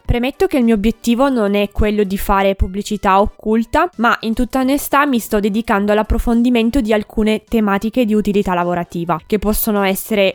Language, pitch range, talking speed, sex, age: Italian, 195-250 Hz, 170 wpm, female, 20-39